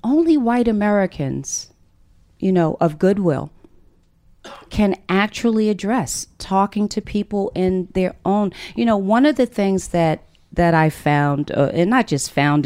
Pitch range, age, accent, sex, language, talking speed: 155-210 Hz, 40-59, American, female, English, 145 wpm